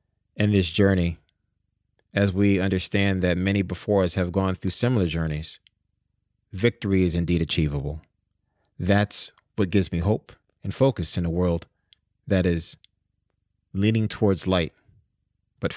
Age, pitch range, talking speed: 30-49, 85-100 Hz, 135 wpm